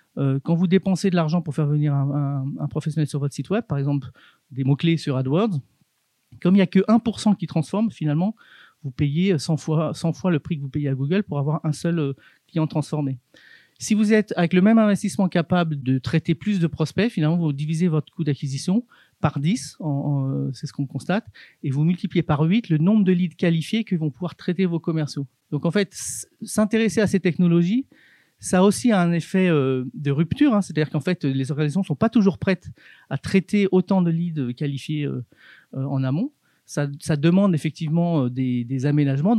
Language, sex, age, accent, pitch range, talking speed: French, male, 40-59, French, 145-185 Hz, 205 wpm